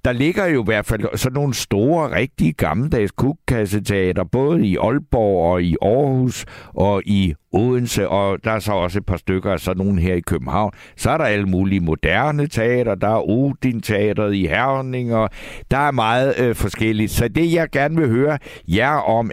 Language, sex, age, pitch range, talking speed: Danish, male, 60-79, 100-130 Hz, 185 wpm